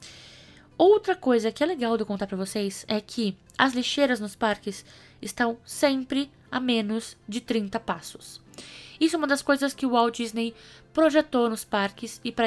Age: 10-29